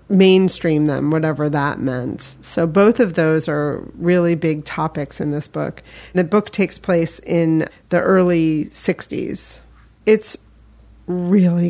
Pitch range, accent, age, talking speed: 155-180 Hz, American, 40-59, 135 wpm